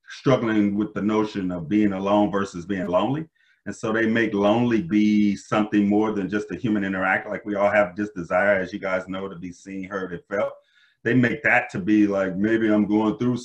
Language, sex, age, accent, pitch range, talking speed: English, male, 30-49, American, 100-125 Hz, 220 wpm